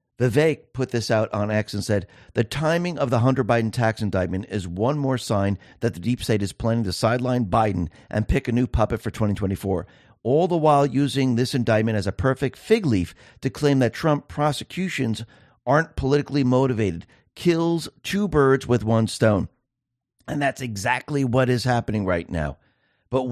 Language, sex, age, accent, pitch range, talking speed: English, male, 50-69, American, 110-145 Hz, 180 wpm